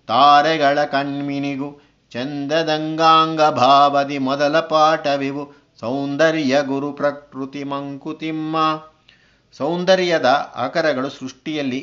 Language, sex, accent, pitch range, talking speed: Kannada, male, native, 130-155 Hz, 65 wpm